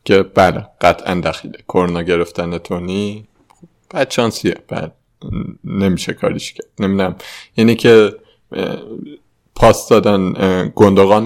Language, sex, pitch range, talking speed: Persian, male, 90-110 Hz, 95 wpm